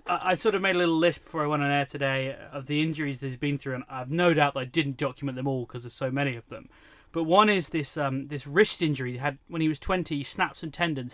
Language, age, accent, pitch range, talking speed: English, 30-49, British, 140-175 Hz, 290 wpm